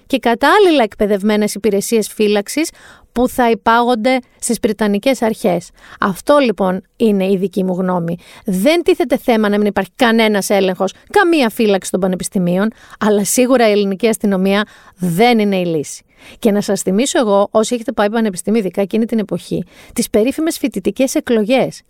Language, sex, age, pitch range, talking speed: Greek, female, 40-59, 205-260 Hz, 150 wpm